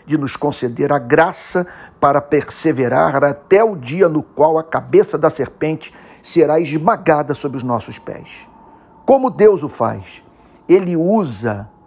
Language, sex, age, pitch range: Portuguese, male, 50-69, 135-175 Hz